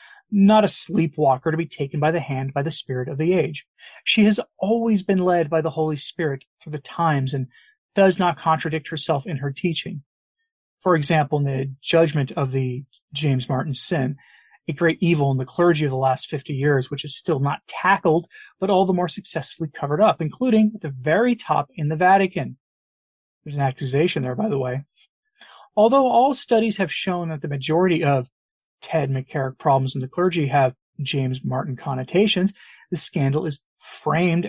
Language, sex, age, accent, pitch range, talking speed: English, male, 30-49, American, 140-185 Hz, 185 wpm